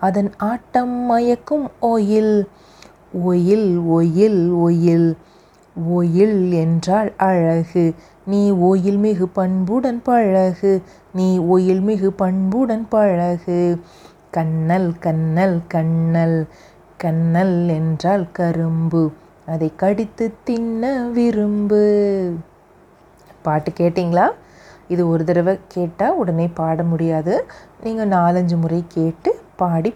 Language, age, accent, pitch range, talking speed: Tamil, 30-49, native, 165-195 Hz, 85 wpm